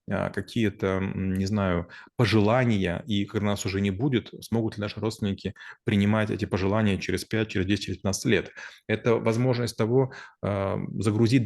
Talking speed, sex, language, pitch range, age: 145 wpm, male, Russian, 100-115 Hz, 20-39